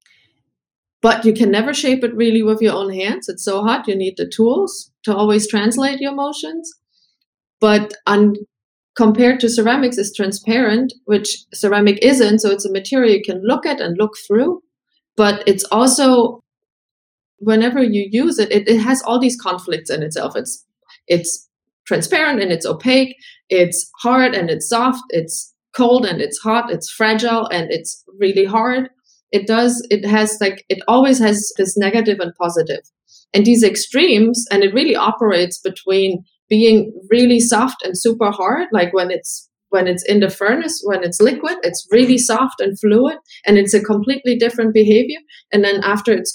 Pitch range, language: 200-245 Hz, English